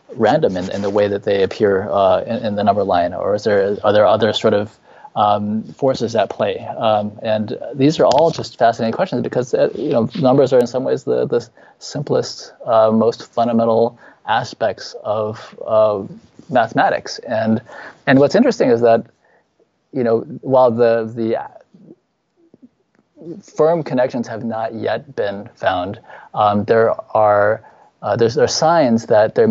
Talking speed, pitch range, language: 165 wpm, 110-145 Hz, English